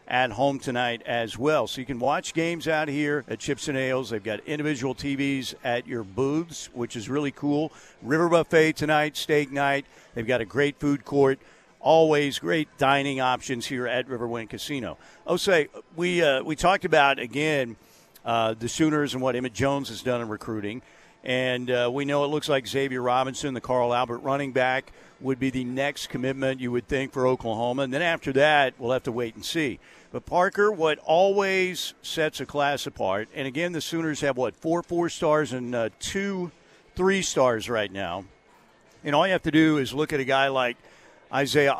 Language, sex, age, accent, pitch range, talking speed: English, male, 50-69, American, 125-155 Hz, 190 wpm